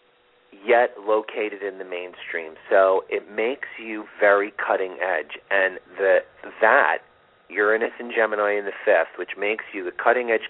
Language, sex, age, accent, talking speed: English, male, 40-59, American, 145 wpm